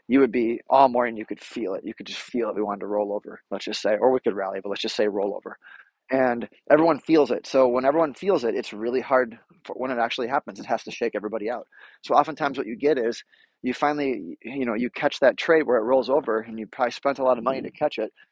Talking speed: 280 wpm